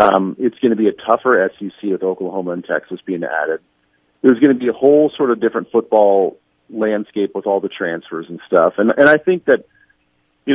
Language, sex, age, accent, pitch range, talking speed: English, male, 40-59, American, 100-165 Hz, 210 wpm